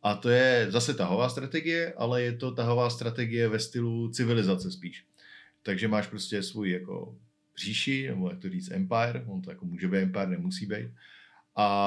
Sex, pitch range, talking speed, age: male, 100-130 Hz, 175 wpm, 50-69